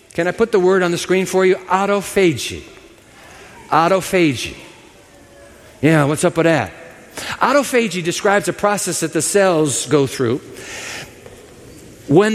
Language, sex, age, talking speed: English, male, 60-79, 130 wpm